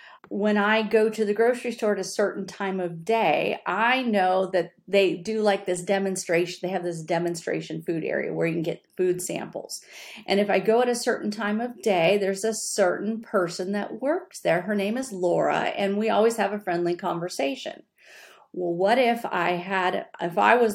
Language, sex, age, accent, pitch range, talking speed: English, female, 40-59, American, 185-220 Hz, 200 wpm